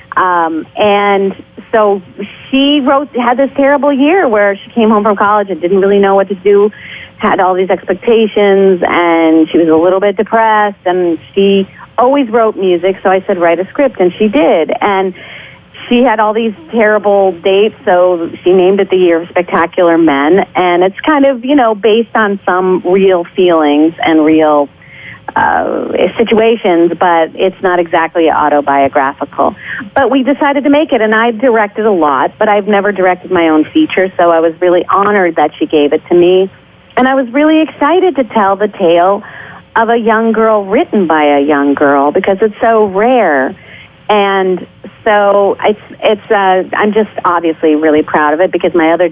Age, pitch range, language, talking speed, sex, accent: 40-59, 170-220 Hz, English, 180 wpm, female, American